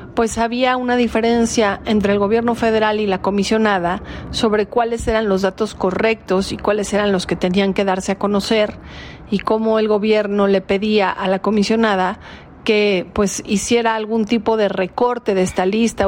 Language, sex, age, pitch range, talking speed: Spanish, female, 40-59, 190-220 Hz, 170 wpm